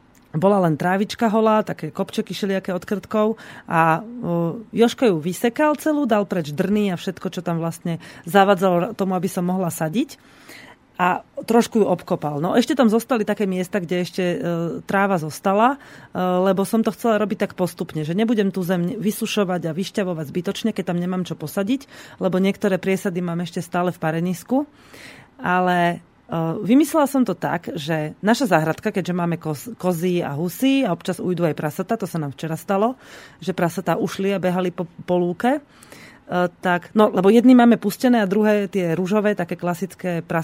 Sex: female